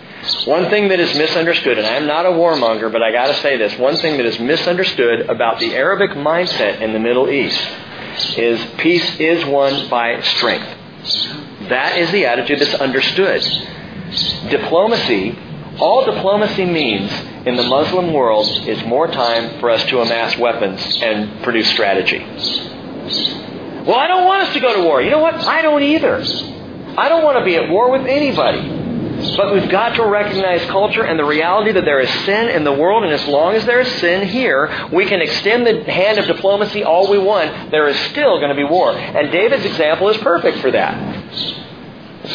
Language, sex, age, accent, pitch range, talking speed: English, male, 40-59, American, 135-200 Hz, 190 wpm